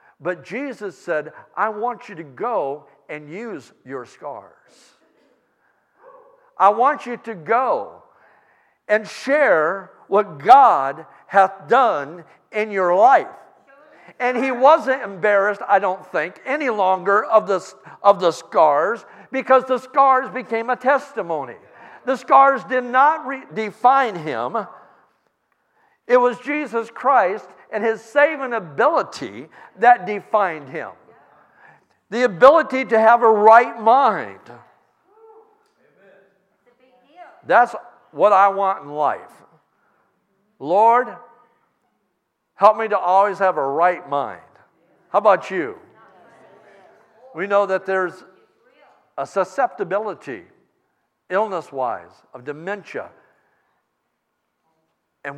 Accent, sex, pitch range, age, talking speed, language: American, male, 190-265 Hz, 50-69, 105 wpm, English